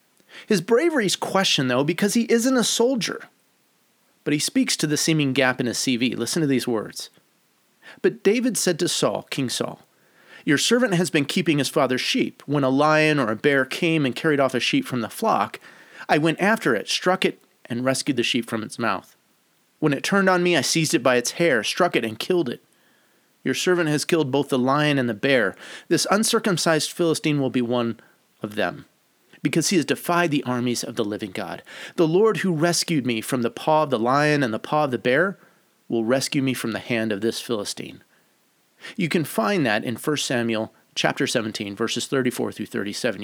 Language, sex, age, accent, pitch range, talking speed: English, male, 30-49, American, 125-175 Hz, 210 wpm